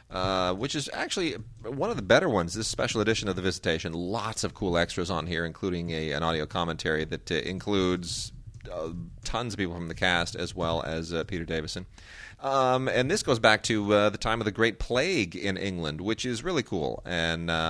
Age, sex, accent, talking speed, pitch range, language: 30-49, male, American, 210 wpm, 90-115 Hz, English